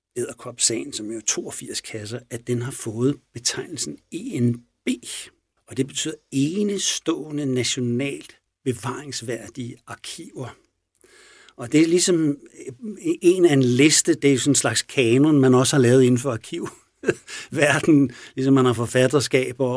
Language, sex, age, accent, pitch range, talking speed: Danish, male, 60-79, native, 120-150 Hz, 135 wpm